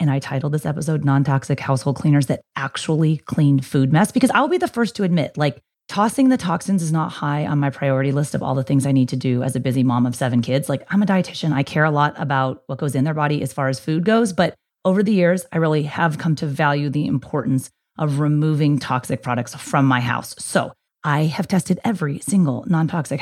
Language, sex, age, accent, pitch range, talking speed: English, female, 30-49, American, 135-175 Hz, 235 wpm